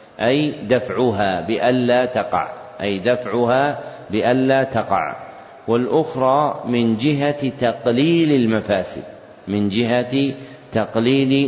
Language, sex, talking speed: Arabic, male, 85 wpm